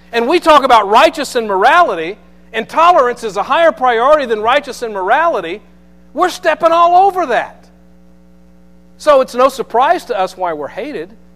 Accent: American